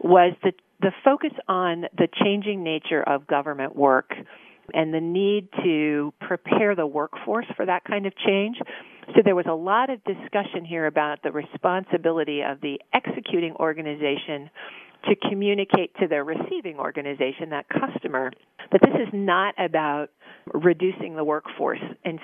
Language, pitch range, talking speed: English, 155-200 Hz, 150 wpm